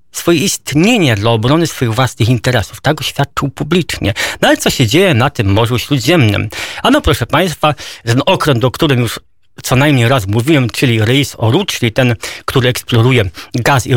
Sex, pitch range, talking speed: male, 125-175 Hz, 175 wpm